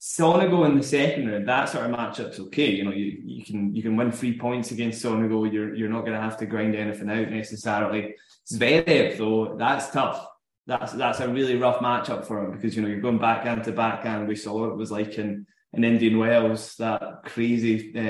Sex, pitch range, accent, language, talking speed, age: male, 105-120 Hz, British, English, 215 wpm, 10-29